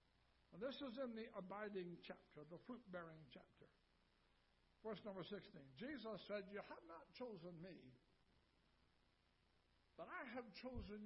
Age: 60-79